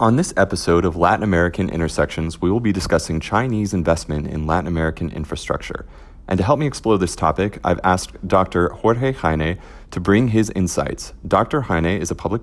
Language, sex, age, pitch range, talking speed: English, male, 30-49, 80-105 Hz, 185 wpm